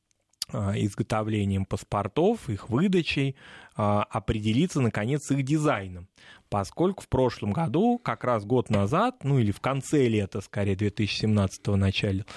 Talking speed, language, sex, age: 125 wpm, Russian, male, 20-39